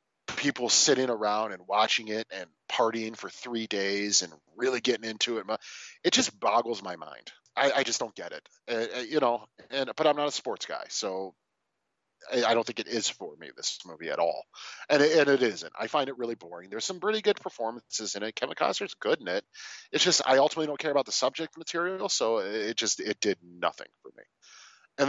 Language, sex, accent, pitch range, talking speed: English, male, American, 105-150 Hz, 220 wpm